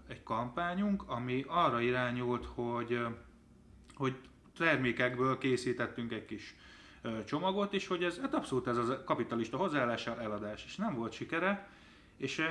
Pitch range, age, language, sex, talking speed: 115-145 Hz, 20-39, Hungarian, male, 130 wpm